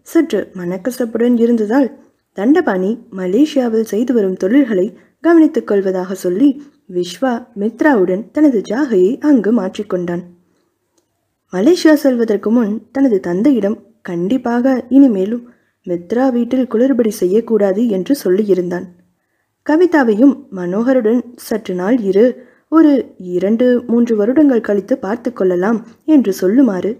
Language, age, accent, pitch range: Tamil, 20-39, native, 195-265 Hz